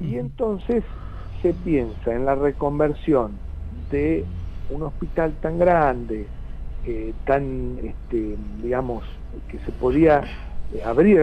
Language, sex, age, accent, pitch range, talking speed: Spanish, male, 60-79, Argentinian, 120-160 Hz, 100 wpm